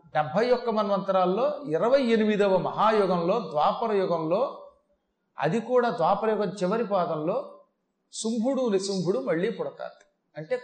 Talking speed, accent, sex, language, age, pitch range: 100 wpm, native, male, Telugu, 40-59, 175-230 Hz